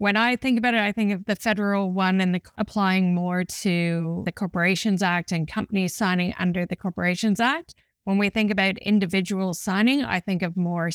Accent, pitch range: American, 180-205 Hz